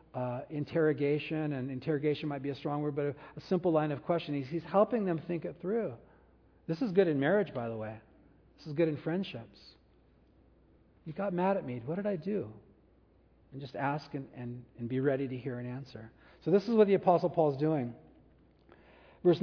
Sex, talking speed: male, 205 wpm